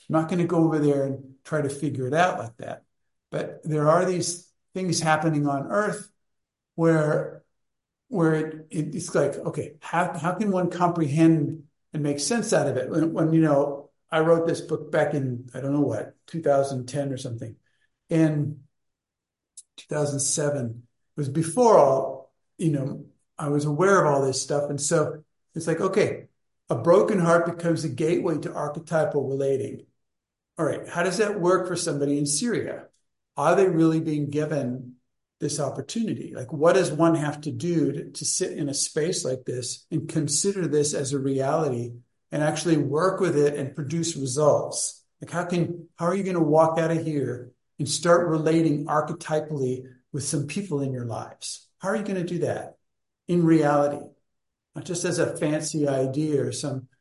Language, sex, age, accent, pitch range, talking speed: English, male, 50-69, American, 140-165 Hz, 180 wpm